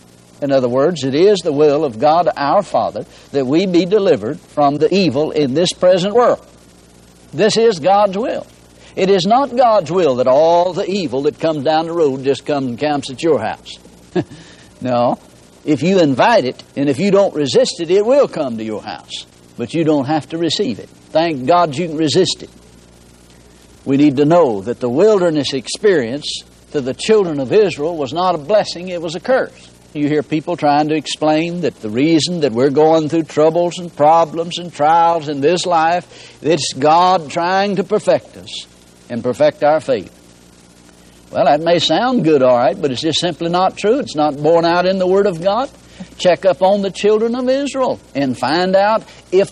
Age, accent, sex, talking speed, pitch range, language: 60-79, American, male, 195 wpm, 125-185 Hz, English